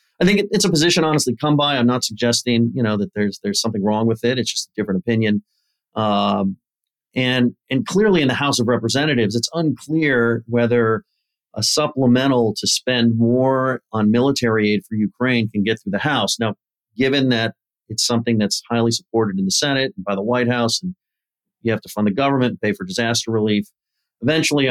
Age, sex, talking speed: 40-59, male, 195 wpm